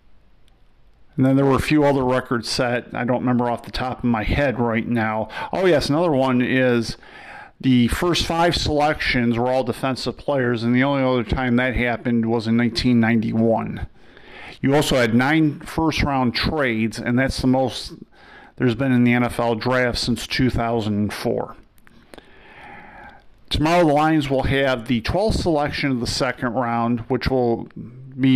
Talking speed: 160 wpm